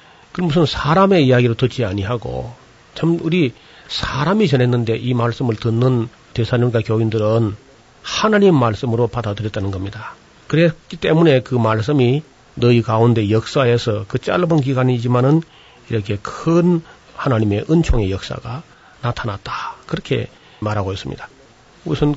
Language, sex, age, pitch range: Korean, male, 40-59, 115-145 Hz